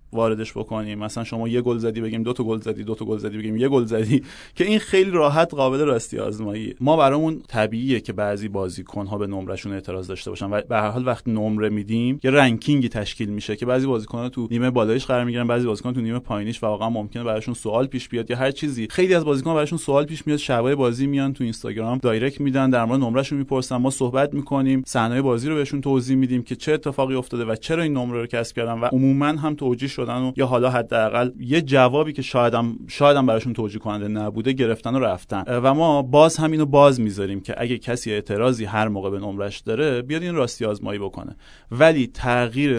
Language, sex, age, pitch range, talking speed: Persian, male, 30-49, 110-135 Hz, 215 wpm